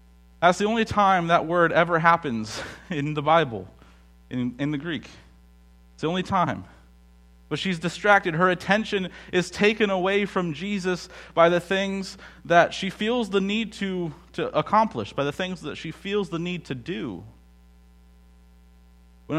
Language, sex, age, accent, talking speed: English, male, 30-49, American, 160 wpm